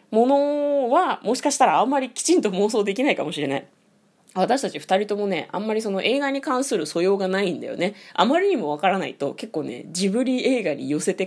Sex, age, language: female, 20-39, Japanese